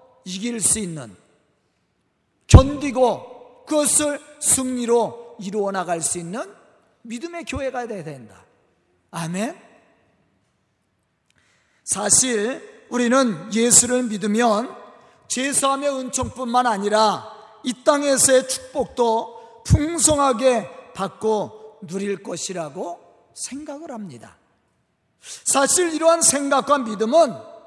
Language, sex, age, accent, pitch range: Korean, male, 40-59, native, 220-285 Hz